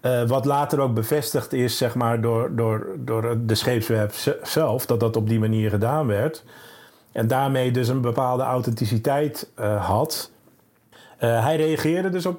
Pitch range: 120-160 Hz